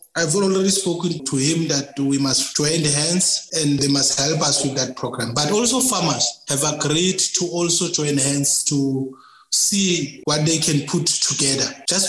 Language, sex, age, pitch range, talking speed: English, male, 20-39, 135-155 Hz, 180 wpm